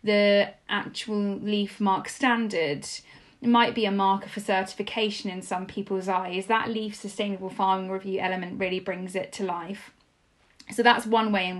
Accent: British